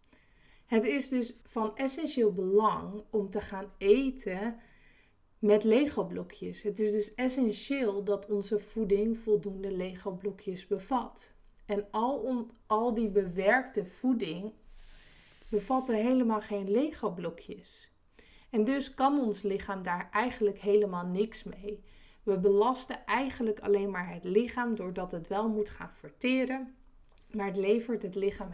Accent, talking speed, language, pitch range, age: Dutch, 130 wpm, Dutch, 200-235 Hz, 20-39